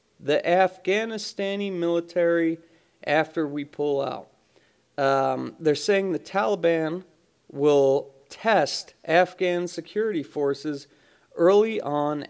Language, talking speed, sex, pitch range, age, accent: English, 95 wpm, male, 150-205 Hz, 30-49, American